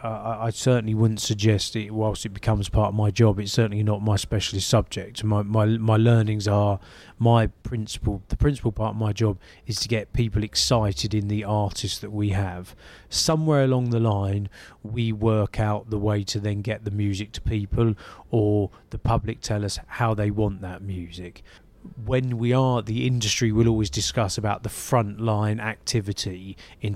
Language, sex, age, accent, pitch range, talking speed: English, male, 20-39, British, 100-120 Hz, 180 wpm